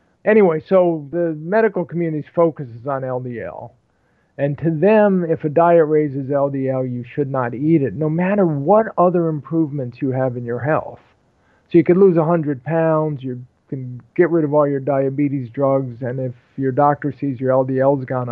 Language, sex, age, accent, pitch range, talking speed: English, male, 50-69, American, 130-165 Hz, 180 wpm